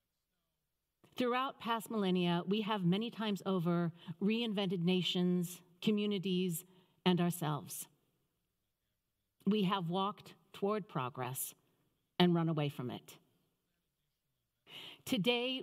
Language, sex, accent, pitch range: English, female, American, 155-200 Hz